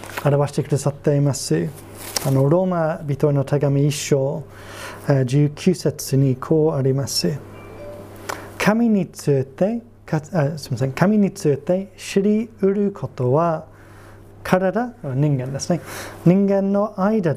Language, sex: Japanese, male